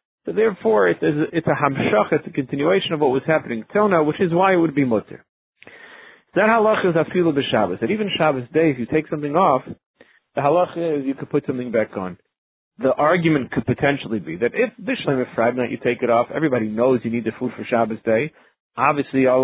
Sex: male